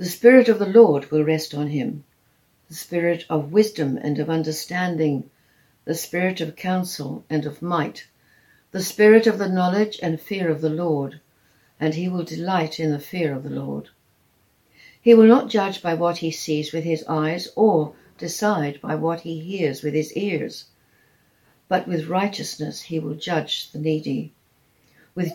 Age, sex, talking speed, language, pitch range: 60-79, female, 170 wpm, English, 150-185 Hz